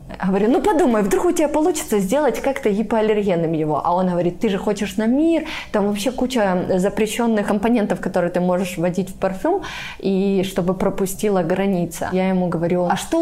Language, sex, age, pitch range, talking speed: Russian, female, 20-39, 175-215 Hz, 180 wpm